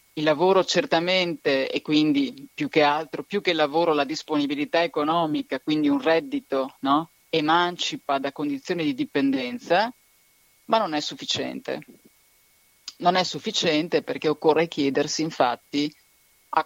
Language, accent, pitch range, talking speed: Italian, native, 145-175 Hz, 125 wpm